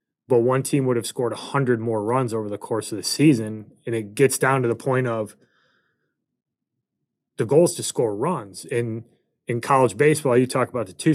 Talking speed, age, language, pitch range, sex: 210 wpm, 30-49, English, 115-140 Hz, male